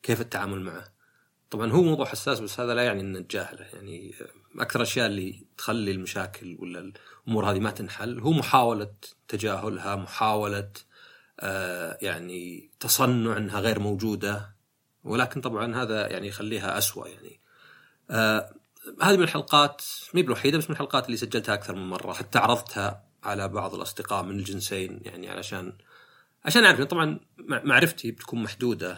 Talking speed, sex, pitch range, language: 145 wpm, male, 95-120 Hz, Arabic